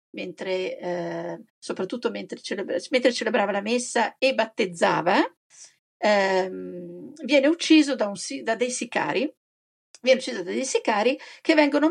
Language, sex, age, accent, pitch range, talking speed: Italian, female, 50-69, native, 205-295 Hz, 130 wpm